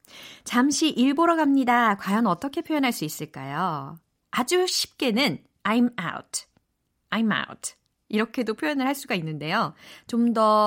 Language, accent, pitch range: Korean, native, 175-250 Hz